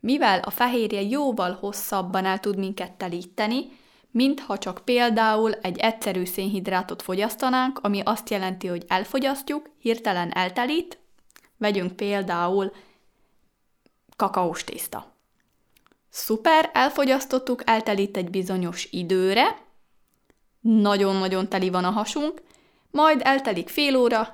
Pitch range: 195-255 Hz